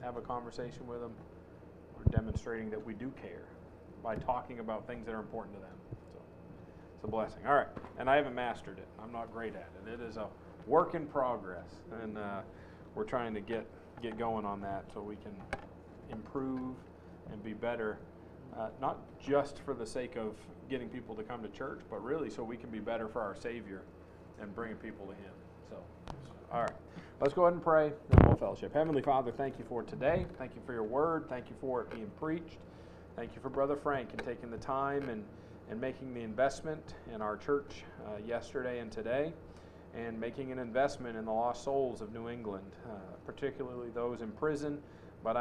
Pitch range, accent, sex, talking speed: 105-130 Hz, American, male, 205 wpm